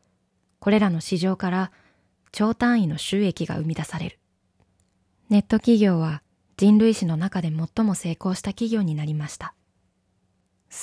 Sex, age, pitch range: female, 20-39, 150-200 Hz